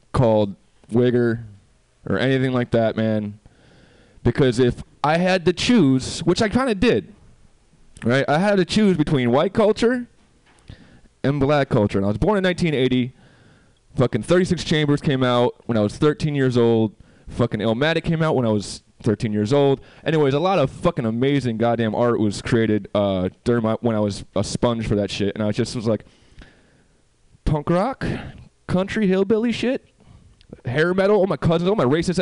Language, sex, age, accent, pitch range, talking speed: English, male, 20-39, American, 110-150 Hz, 175 wpm